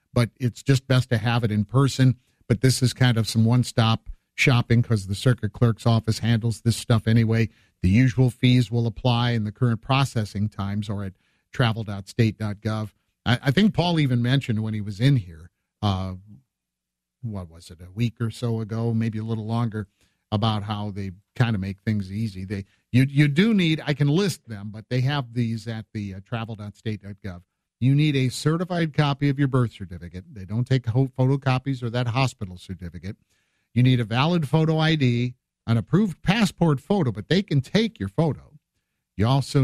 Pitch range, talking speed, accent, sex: 105-135 Hz, 185 wpm, American, male